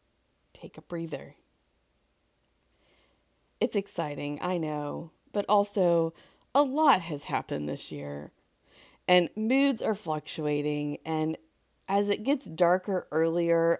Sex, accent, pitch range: female, American, 155-220 Hz